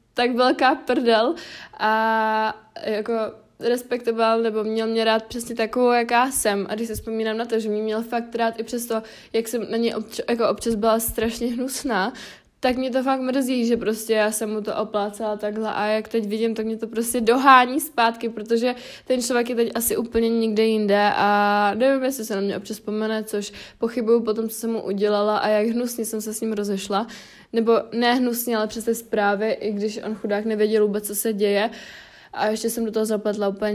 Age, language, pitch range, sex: 20-39, Czech, 205-230 Hz, female